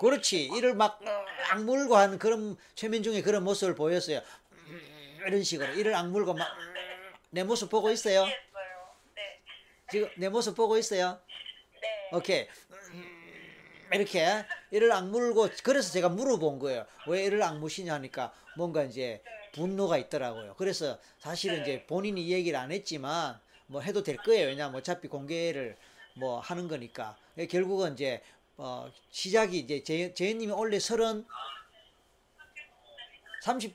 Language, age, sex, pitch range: Korean, 40-59, male, 150-205 Hz